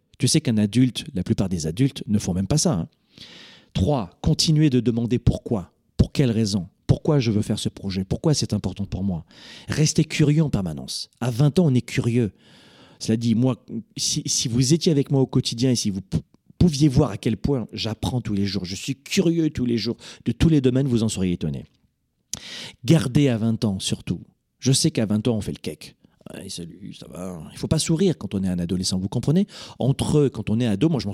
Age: 40-59